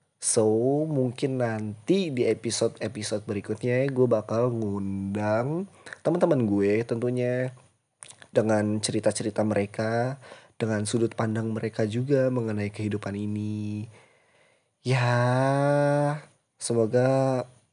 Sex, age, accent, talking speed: male, 20-39, native, 85 wpm